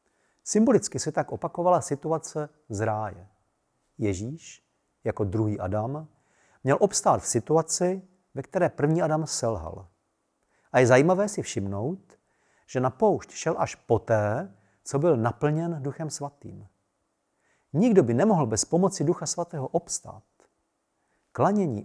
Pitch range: 110-165 Hz